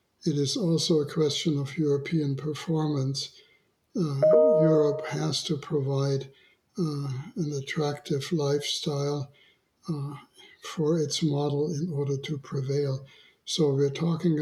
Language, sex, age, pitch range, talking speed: English, male, 60-79, 140-160 Hz, 115 wpm